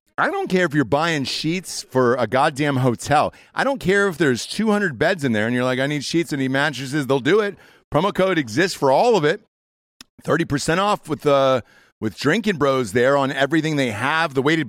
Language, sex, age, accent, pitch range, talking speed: English, male, 40-59, American, 115-180 Hz, 215 wpm